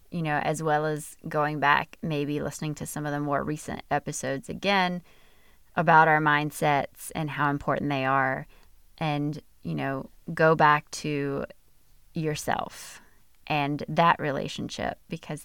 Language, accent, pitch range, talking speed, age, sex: English, American, 140-160 Hz, 140 wpm, 20-39, female